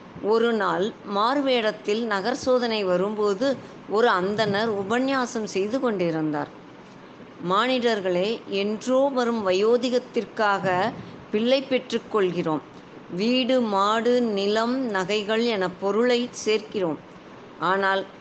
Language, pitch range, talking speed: Tamil, 190-245 Hz, 85 wpm